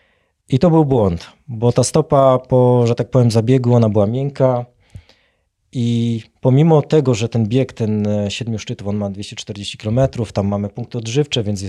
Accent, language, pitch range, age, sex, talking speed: native, Polish, 110-130 Hz, 20-39, male, 170 wpm